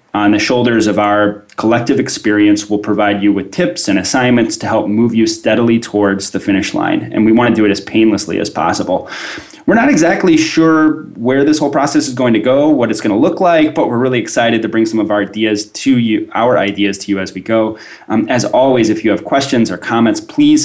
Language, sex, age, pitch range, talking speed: English, male, 20-39, 105-135 Hz, 230 wpm